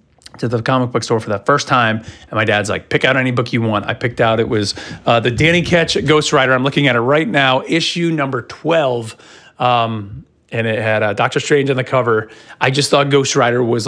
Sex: male